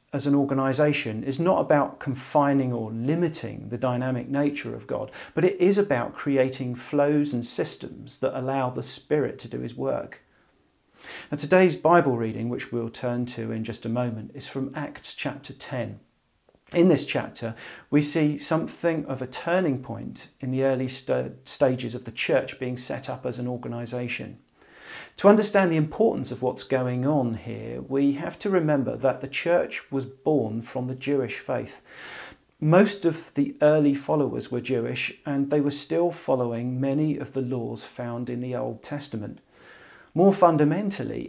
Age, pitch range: 40-59, 125-150 Hz